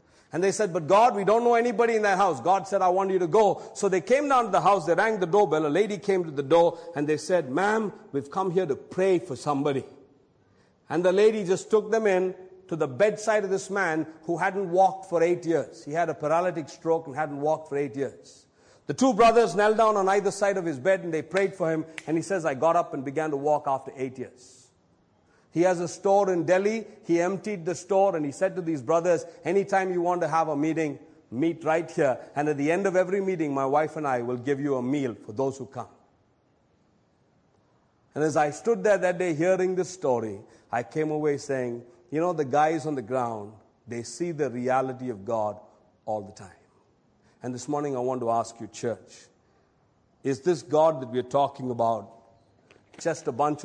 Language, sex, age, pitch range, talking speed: English, male, 50-69, 135-190 Hz, 225 wpm